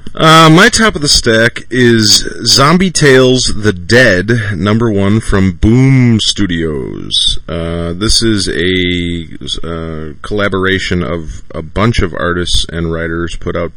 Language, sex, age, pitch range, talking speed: English, male, 30-49, 85-105 Hz, 135 wpm